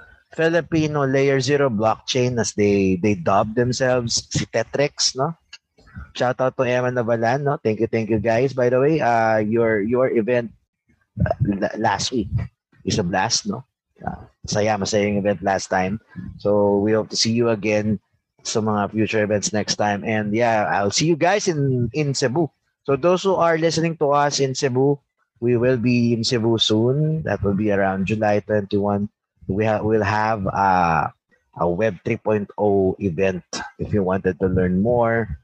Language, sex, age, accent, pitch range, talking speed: Filipino, male, 20-39, native, 100-125 Hz, 175 wpm